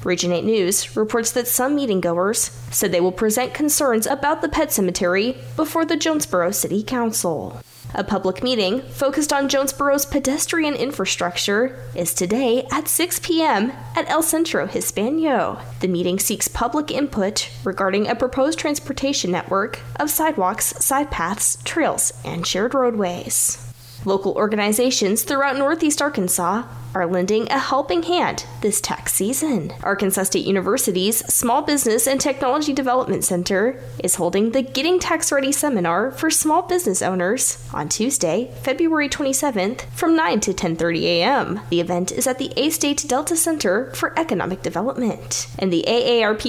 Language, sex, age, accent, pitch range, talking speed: English, female, 10-29, American, 180-285 Hz, 145 wpm